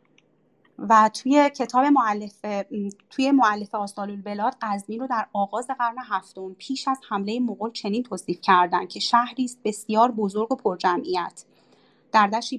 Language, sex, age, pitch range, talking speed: Persian, female, 30-49, 200-250 Hz, 120 wpm